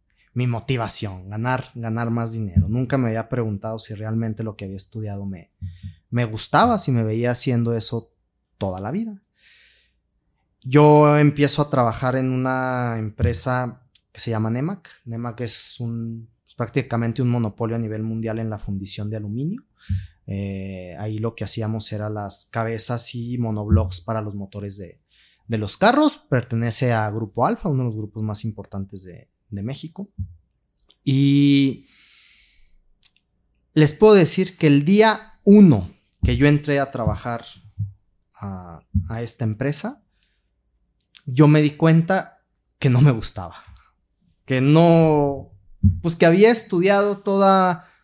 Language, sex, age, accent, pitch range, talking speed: Spanish, male, 20-39, Mexican, 105-140 Hz, 145 wpm